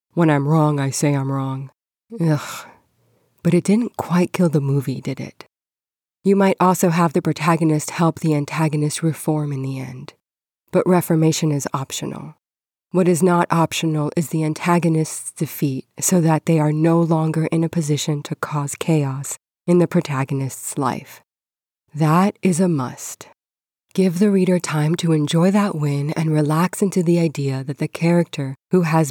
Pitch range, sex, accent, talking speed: 150-180 Hz, female, American, 165 wpm